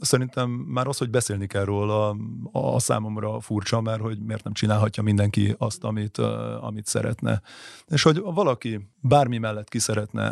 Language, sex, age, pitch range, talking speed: Hungarian, male, 30-49, 110-125 Hz, 155 wpm